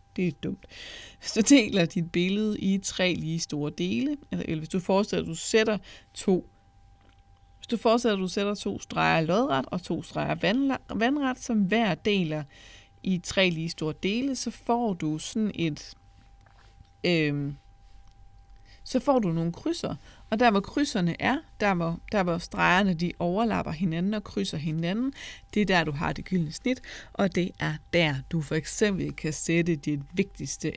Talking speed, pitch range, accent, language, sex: 160 wpm, 135-195 Hz, native, Danish, female